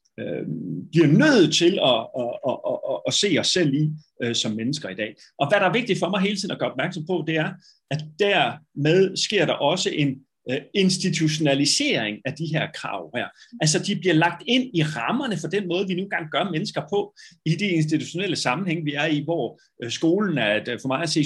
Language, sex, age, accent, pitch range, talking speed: Danish, male, 30-49, native, 135-185 Hz, 225 wpm